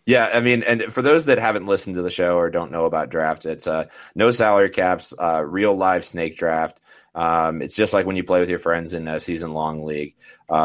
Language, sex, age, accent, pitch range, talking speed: English, male, 20-39, American, 85-110 Hz, 240 wpm